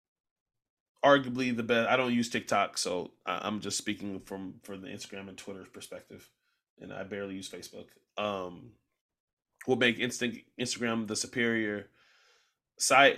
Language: English